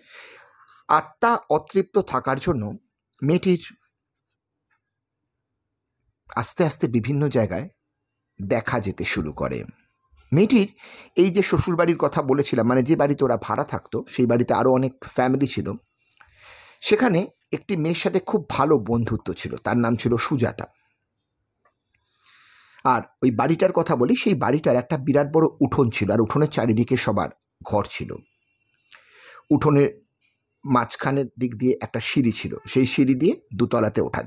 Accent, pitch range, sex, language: native, 115-155 Hz, male, Bengali